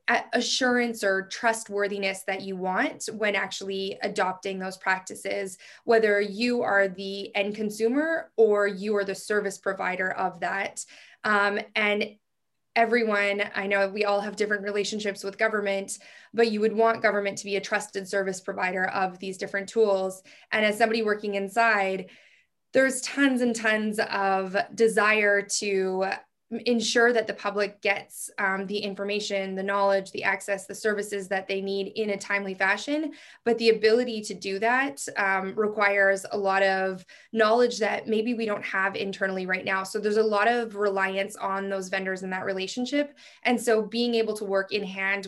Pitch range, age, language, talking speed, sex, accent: 195-220 Hz, 20-39, English, 165 wpm, female, American